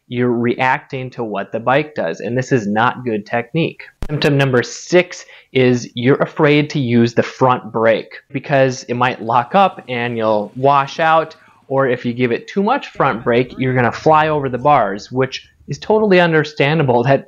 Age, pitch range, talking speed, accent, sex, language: 20-39, 125-150 Hz, 185 wpm, American, male, English